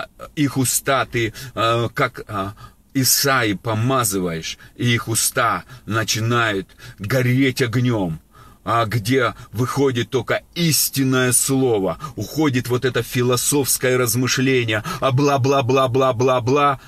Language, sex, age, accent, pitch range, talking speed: Russian, male, 30-49, native, 105-130 Hz, 85 wpm